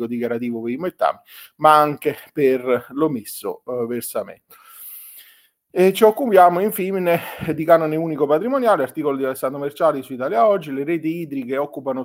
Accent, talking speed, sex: native, 140 wpm, male